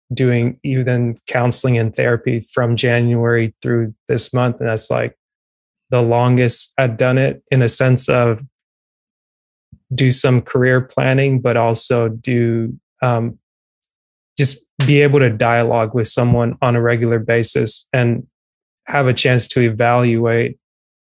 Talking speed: 135 wpm